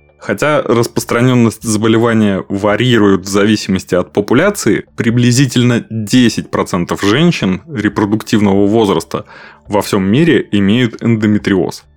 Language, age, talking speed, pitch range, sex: Russian, 20-39, 90 wpm, 100-120 Hz, male